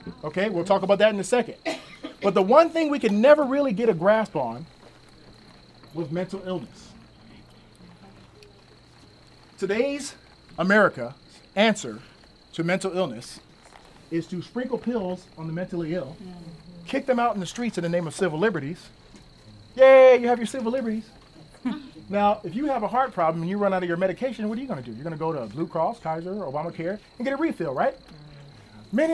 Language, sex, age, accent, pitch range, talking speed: English, male, 40-59, American, 180-255 Hz, 185 wpm